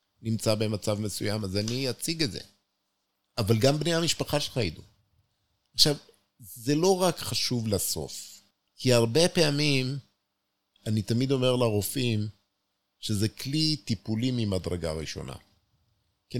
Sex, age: male, 50-69